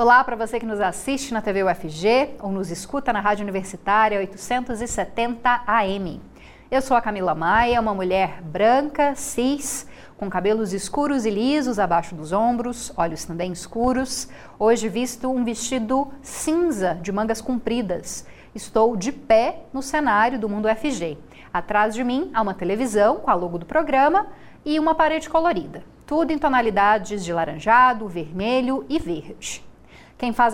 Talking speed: 155 wpm